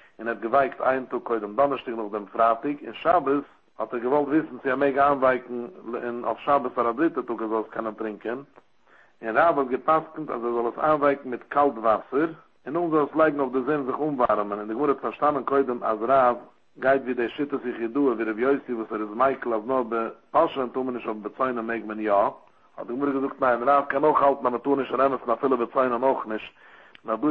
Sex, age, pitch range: male, 60-79, 115-140 Hz